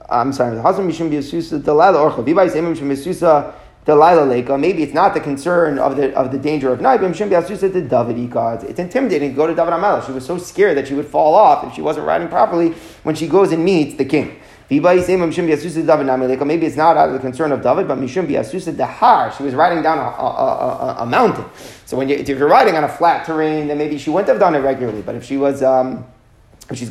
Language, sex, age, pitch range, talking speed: English, male, 30-49, 140-175 Hz, 190 wpm